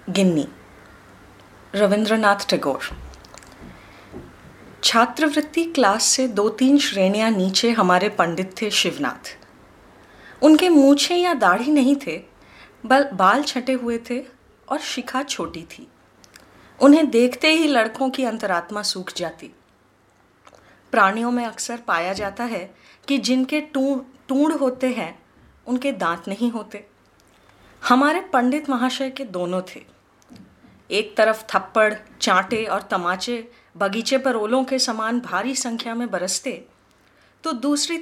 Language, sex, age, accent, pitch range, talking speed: Hindi, female, 20-39, native, 190-265 Hz, 120 wpm